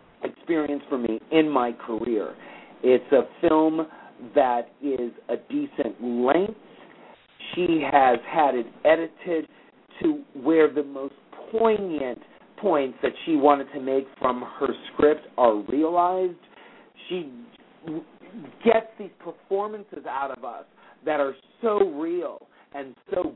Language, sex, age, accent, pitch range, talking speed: English, male, 50-69, American, 130-210 Hz, 125 wpm